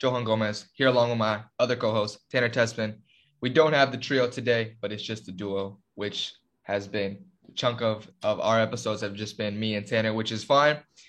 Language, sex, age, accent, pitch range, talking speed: English, male, 10-29, American, 110-125 Hz, 210 wpm